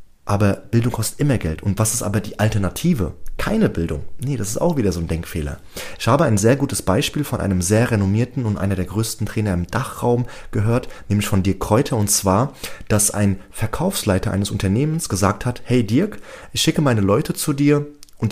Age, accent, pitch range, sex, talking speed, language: 30-49, German, 100-130 Hz, male, 200 wpm, German